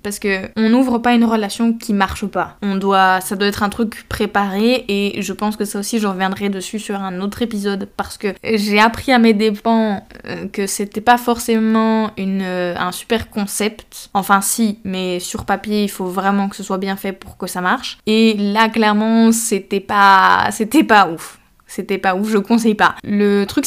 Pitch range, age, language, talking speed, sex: 195-225 Hz, 20-39, French, 200 wpm, female